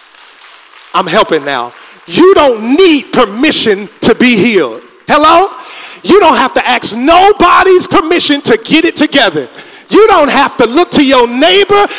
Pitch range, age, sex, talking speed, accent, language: 290-370 Hz, 40-59, male, 150 wpm, American, English